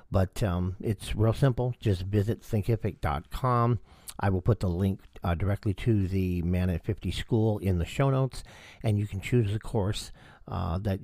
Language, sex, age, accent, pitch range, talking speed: English, male, 50-69, American, 85-105 Hz, 180 wpm